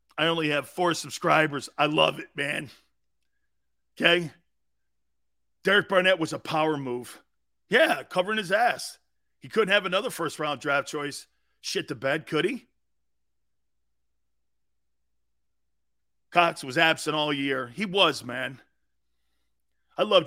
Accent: American